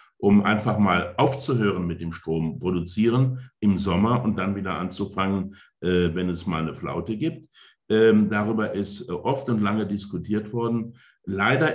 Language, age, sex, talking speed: German, 60-79, male, 145 wpm